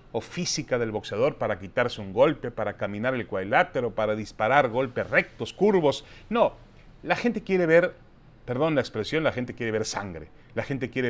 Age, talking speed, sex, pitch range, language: 40-59, 175 wpm, male, 115-150 Hz, Spanish